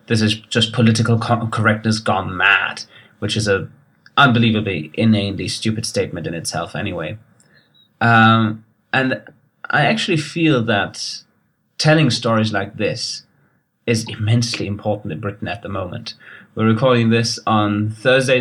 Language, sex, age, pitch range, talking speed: English, male, 30-49, 105-120 Hz, 130 wpm